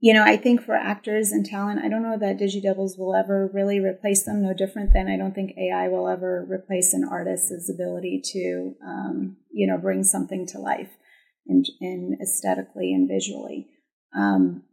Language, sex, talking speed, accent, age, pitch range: English, female, 185 wpm, American, 30-49, 165-200 Hz